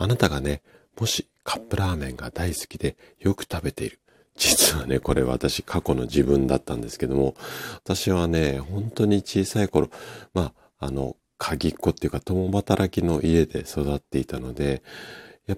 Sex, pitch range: male, 70-85 Hz